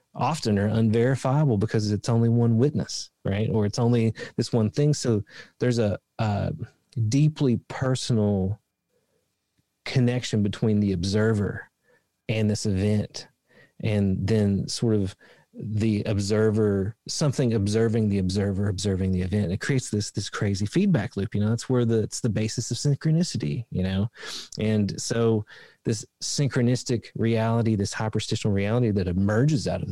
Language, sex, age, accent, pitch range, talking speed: English, male, 30-49, American, 100-120 Hz, 145 wpm